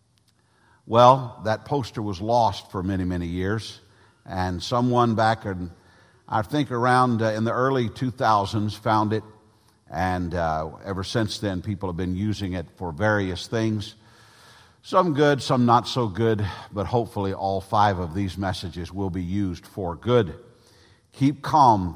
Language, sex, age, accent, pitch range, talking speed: English, male, 50-69, American, 100-125 Hz, 150 wpm